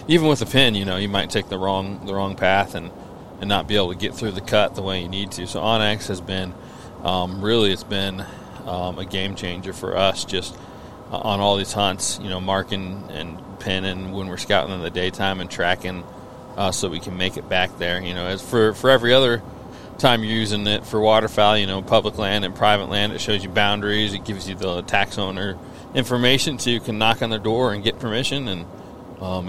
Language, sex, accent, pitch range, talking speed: English, male, American, 95-110 Hz, 230 wpm